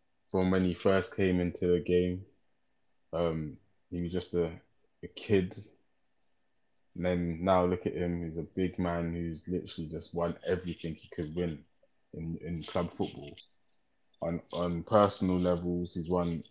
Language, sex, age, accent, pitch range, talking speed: English, male, 20-39, British, 85-95 Hz, 155 wpm